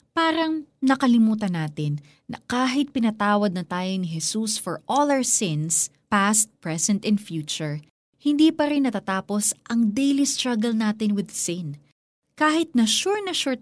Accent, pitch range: native, 175-230 Hz